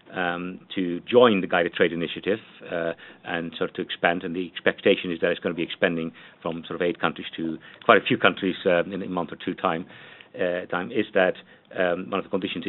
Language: English